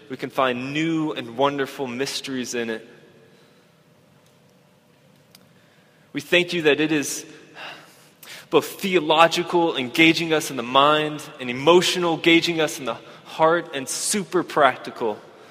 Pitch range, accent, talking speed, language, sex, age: 130-160 Hz, American, 125 wpm, English, male, 20-39